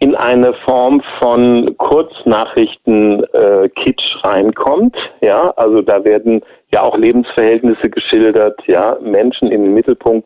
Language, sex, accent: German, male, German